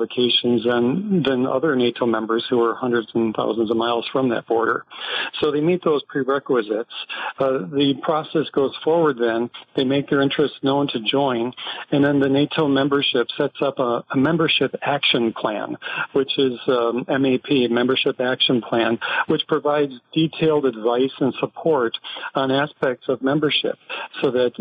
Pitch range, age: 125-140 Hz, 50-69